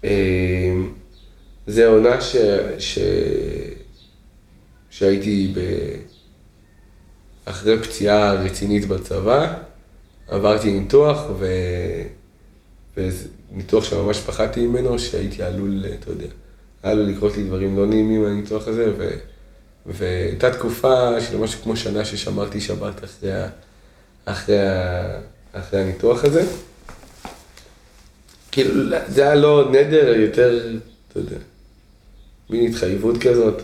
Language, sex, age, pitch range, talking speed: Hebrew, male, 30-49, 95-115 Hz, 90 wpm